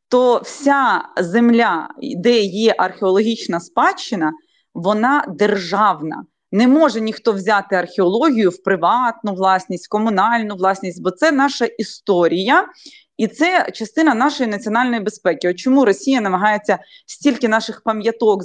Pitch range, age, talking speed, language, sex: 200-270 Hz, 20-39, 120 wpm, Ukrainian, female